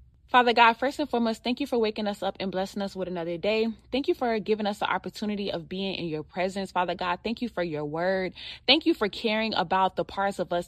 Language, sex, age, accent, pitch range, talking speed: English, female, 20-39, American, 195-250 Hz, 255 wpm